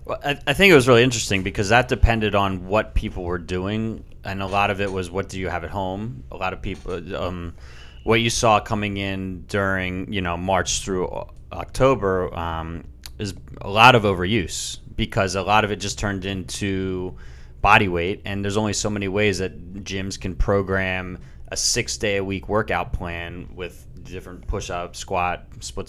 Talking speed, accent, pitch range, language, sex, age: 190 wpm, American, 90-105 Hz, English, male, 30-49